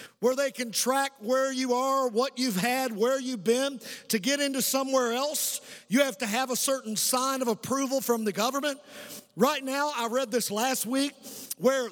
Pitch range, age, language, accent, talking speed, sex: 230-270 Hz, 50-69, English, American, 190 wpm, male